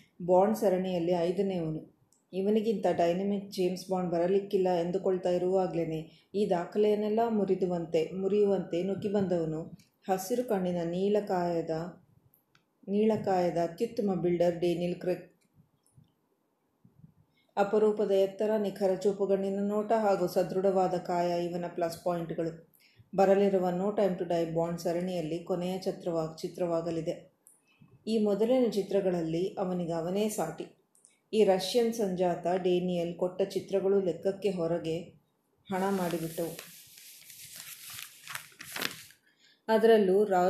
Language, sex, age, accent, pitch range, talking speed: Kannada, female, 20-39, native, 175-200 Hz, 90 wpm